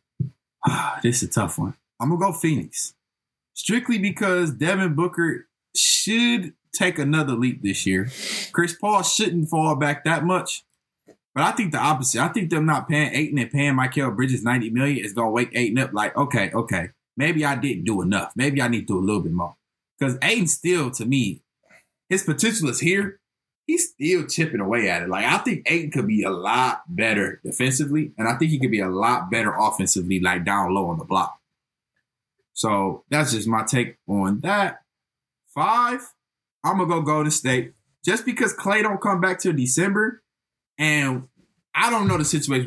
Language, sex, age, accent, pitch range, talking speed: English, male, 20-39, American, 120-185 Hz, 190 wpm